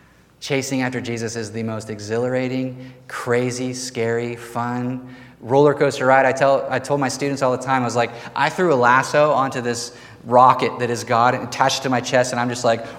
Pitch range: 125-175 Hz